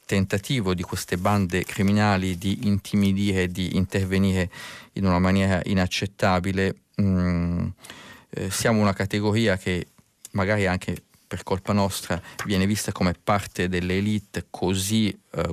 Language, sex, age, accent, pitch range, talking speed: Italian, male, 30-49, native, 90-105 Hz, 120 wpm